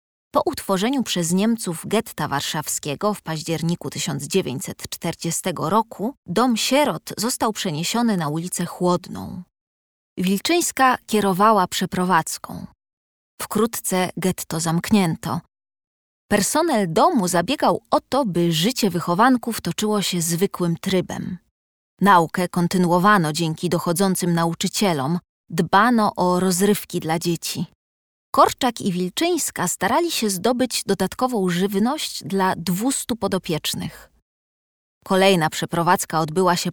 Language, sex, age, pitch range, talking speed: Polish, female, 20-39, 170-210 Hz, 100 wpm